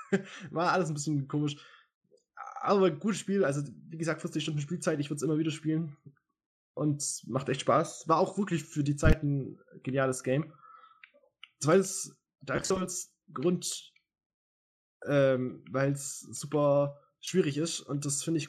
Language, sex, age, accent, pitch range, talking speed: German, male, 20-39, German, 145-180 Hz, 155 wpm